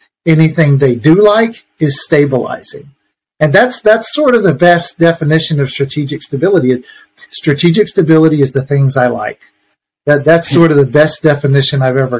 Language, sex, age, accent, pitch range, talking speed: English, male, 40-59, American, 125-155 Hz, 160 wpm